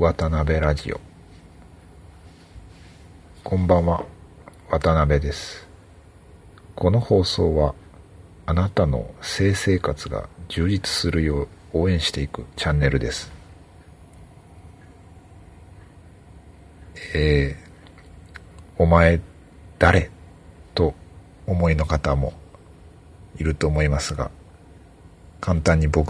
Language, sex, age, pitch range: Japanese, male, 50-69, 75-90 Hz